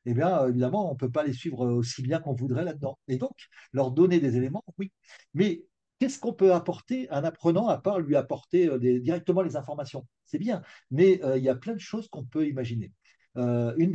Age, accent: 50-69, French